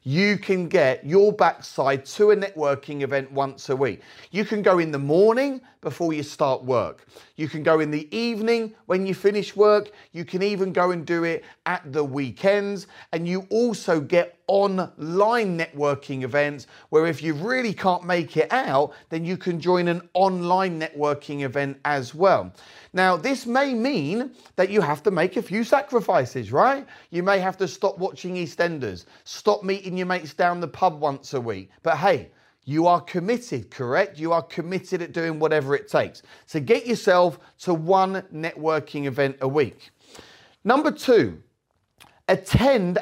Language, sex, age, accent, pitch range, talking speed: English, male, 30-49, British, 155-205 Hz, 170 wpm